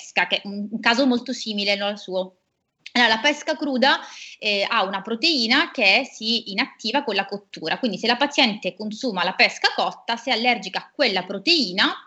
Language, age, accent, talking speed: Italian, 30-49, native, 175 wpm